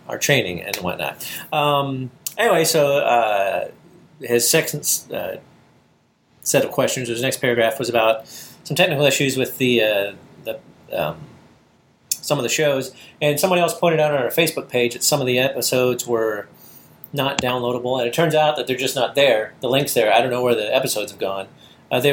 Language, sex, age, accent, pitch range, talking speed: English, male, 30-49, American, 120-150 Hz, 190 wpm